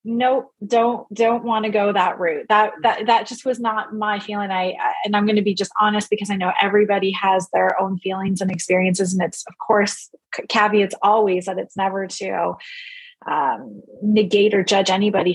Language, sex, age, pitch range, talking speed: English, female, 30-49, 185-215 Hz, 190 wpm